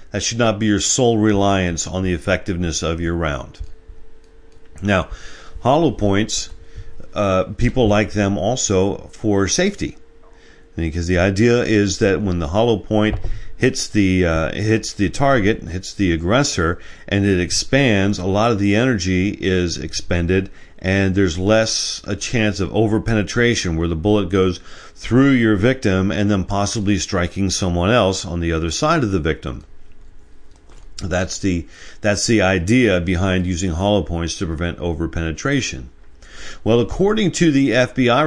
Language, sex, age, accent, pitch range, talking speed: English, male, 50-69, American, 90-110 Hz, 145 wpm